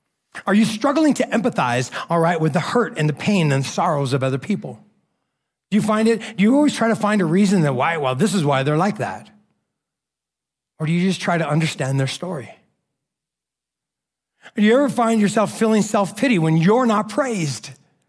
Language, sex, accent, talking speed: English, male, American, 195 wpm